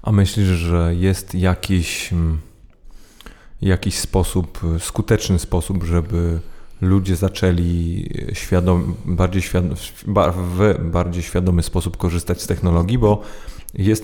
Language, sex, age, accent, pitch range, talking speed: Polish, male, 30-49, native, 90-100 Hz, 105 wpm